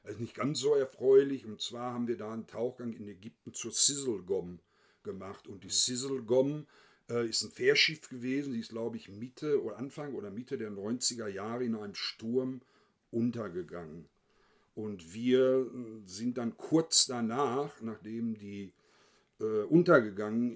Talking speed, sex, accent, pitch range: 145 wpm, male, German, 110-140 Hz